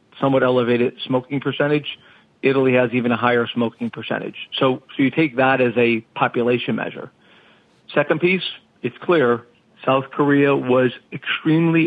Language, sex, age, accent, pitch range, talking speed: English, male, 40-59, American, 120-135 Hz, 140 wpm